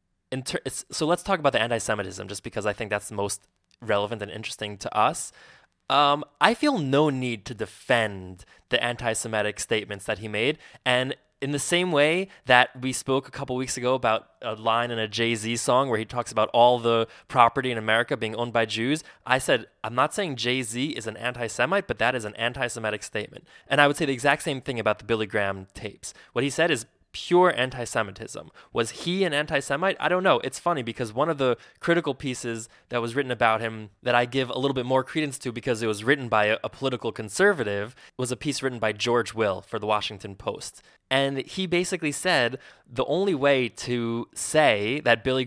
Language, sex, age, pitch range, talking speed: English, male, 20-39, 110-140 Hz, 210 wpm